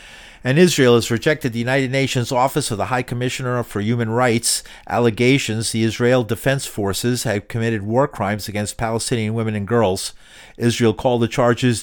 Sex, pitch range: male, 110-130 Hz